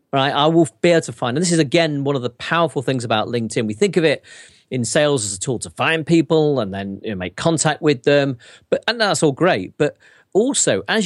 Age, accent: 40-59, British